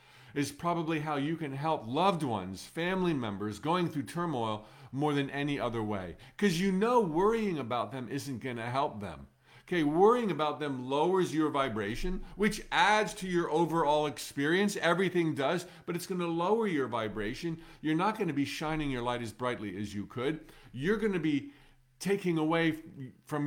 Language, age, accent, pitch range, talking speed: English, 50-69, American, 125-170 Hz, 180 wpm